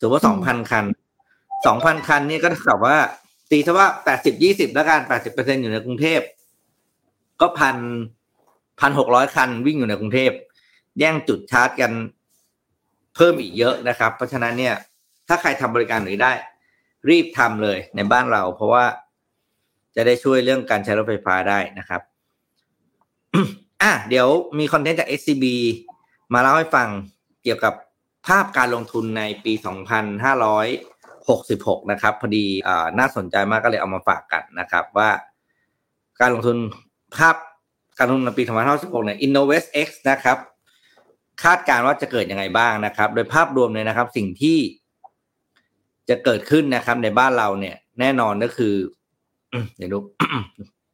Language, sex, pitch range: Thai, male, 110-150 Hz